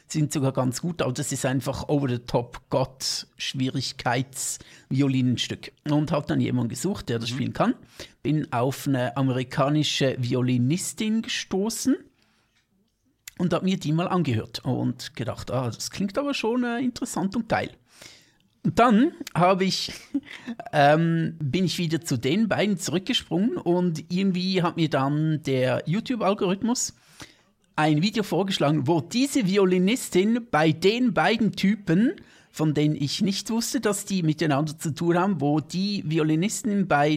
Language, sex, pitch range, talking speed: German, male, 145-195 Hz, 135 wpm